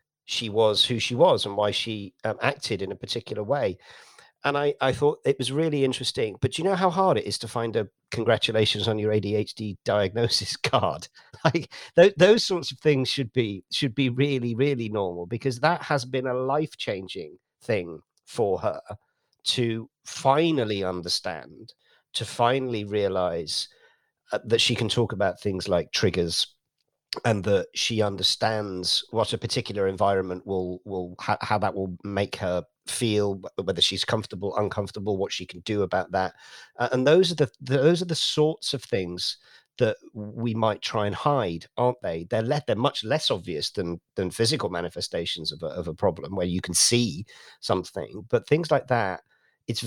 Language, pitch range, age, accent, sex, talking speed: English, 100-135 Hz, 50-69, British, male, 175 wpm